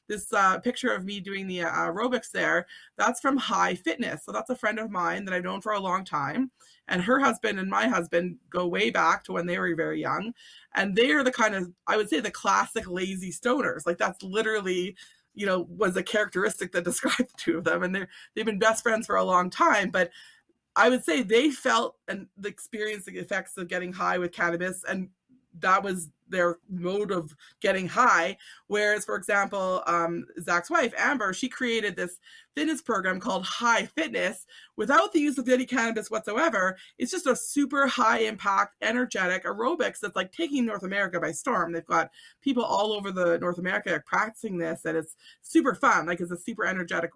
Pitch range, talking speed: 180-240 Hz, 200 wpm